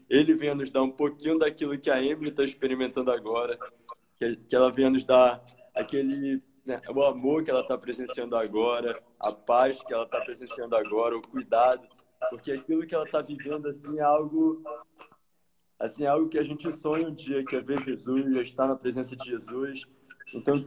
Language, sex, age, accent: Portuguese, male, 20-39, Brazilian